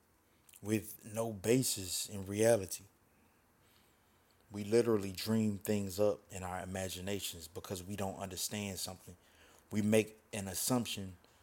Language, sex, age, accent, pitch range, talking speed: English, male, 20-39, American, 95-115 Hz, 115 wpm